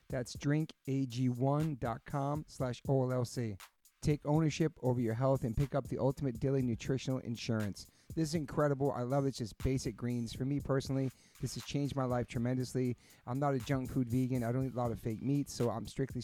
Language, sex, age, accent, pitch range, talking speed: English, male, 40-59, American, 120-140 Hz, 195 wpm